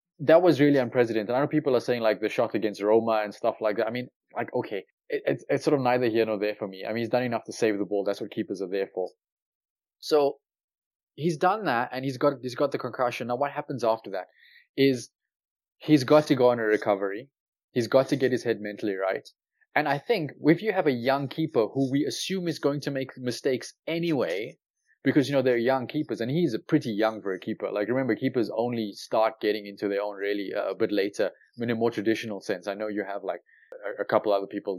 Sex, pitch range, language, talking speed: male, 105-145 Hz, English, 245 wpm